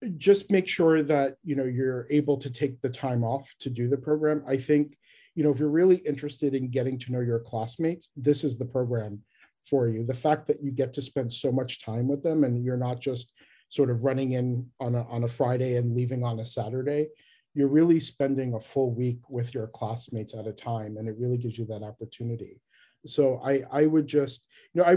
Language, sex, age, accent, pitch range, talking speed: English, male, 40-59, American, 125-145 Hz, 225 wpm